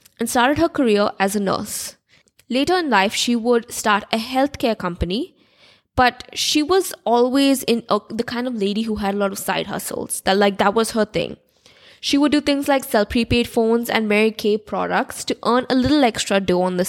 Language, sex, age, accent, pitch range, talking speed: English, female, 20-39, Indian, 200-275 Hz, 210 wpm